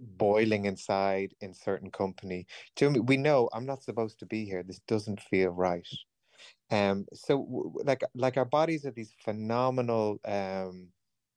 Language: English